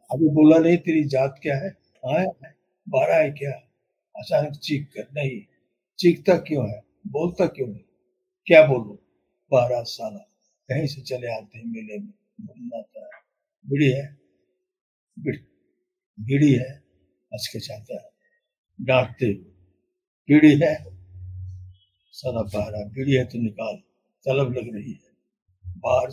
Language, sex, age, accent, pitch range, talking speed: Hindi, male, 60-79, native, 125-175 Hz, 110 wpm